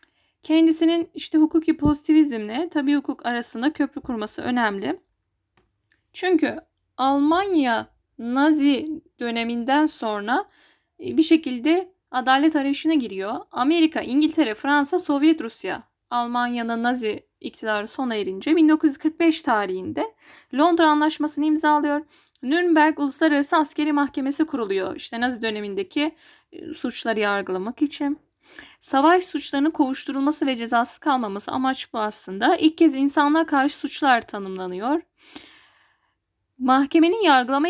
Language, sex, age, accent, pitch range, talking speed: Turkish, female, 10-29, native, 245-315 Hz, 100 wpm